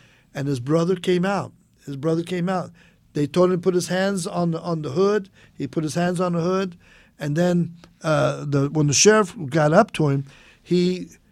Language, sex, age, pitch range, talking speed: English, male, 50-69, 140-180 Hz, 210 wpm